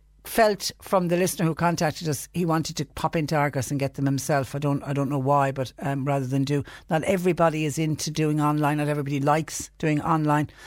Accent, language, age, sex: Irish, English, 60-79, female